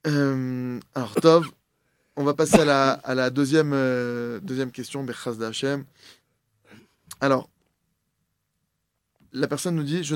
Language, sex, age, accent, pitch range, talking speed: French, male, 20-39, French, 115-150 Hz, 130 wpm